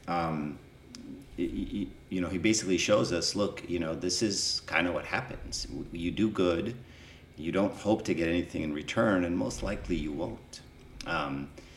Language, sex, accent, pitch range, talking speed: English, male, American, 75-90 Hz, 170 wpm